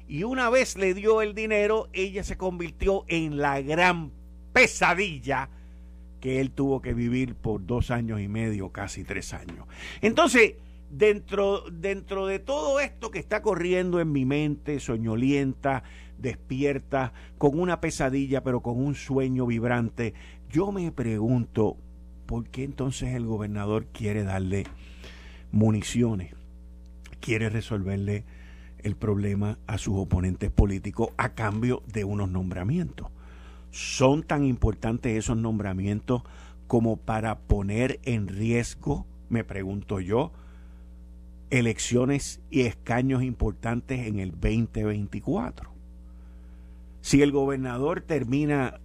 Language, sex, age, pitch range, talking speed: Spanish, male, 50-69, 95-135 Hz, 120 wpm